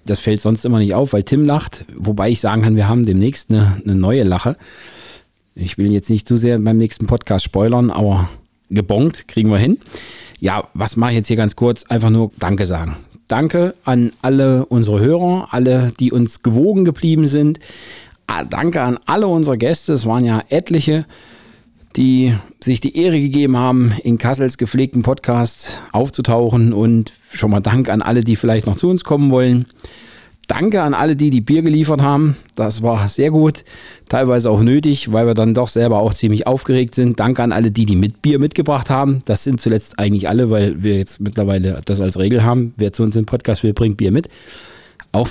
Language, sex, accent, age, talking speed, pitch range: German, male, German, 40-59, 195 wpm, 110-135 Hz